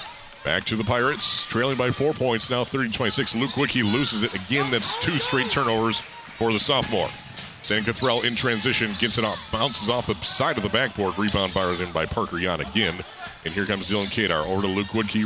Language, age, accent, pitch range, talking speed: English, 40-59, American, 105-125 Hz, 200 wpm